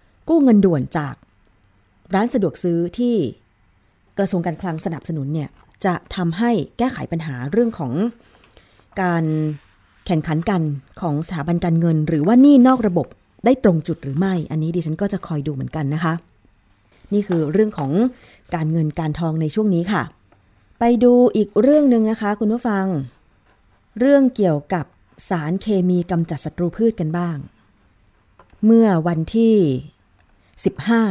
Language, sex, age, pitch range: Thai, female, 20-39, 140-195 Hz